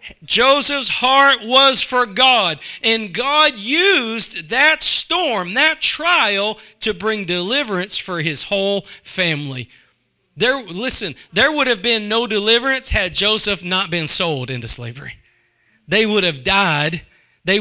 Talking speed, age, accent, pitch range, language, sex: 135 wpm, 40-59, American, 180-250 Hz, English, male